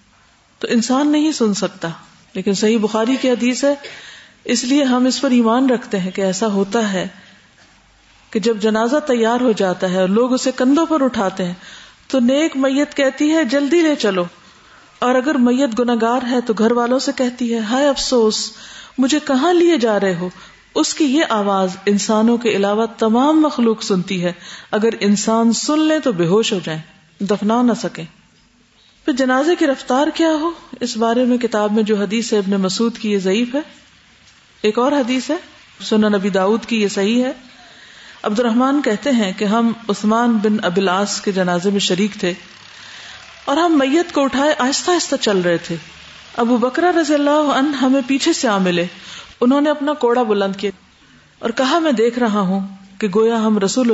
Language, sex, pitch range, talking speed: Urdu, female, 200-270 Hz, 185 wpm